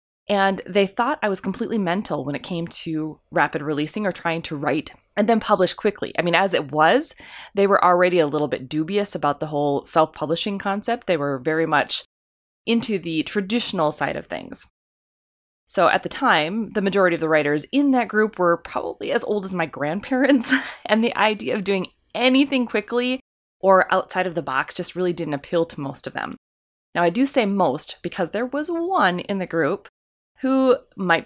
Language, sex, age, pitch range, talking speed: English, female, 20-39, 160-235 Hz, 195 wpm